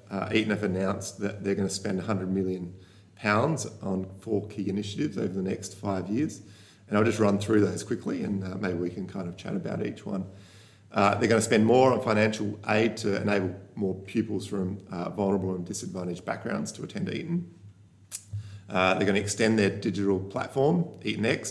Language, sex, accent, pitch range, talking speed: English, male, Australian, 95-105 Hz, 190 wpm